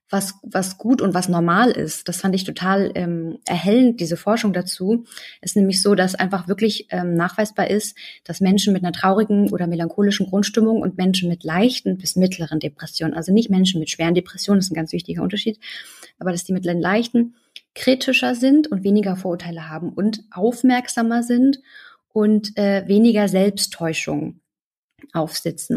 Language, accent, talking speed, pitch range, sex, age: German, German, 165 wpm, 180-215 Hz, female, 30-49